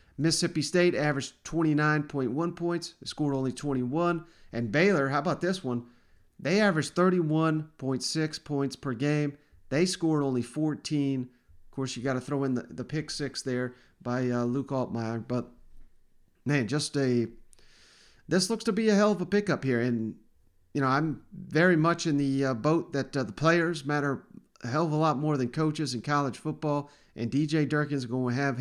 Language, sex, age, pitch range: English, male, 40-59, 130-155 Hz